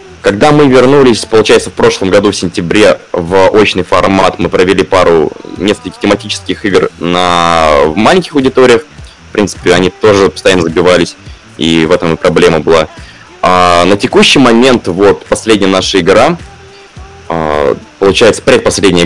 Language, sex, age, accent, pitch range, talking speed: Russian, male, 20-39, native, 85-115 Hz, 130 wpm